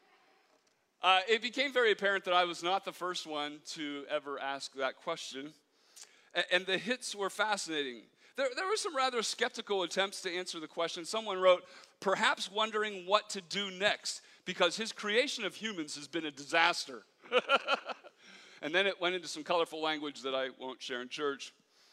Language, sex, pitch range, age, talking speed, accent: English, male, 160-220 Hz, 40-59, 180 wpm, American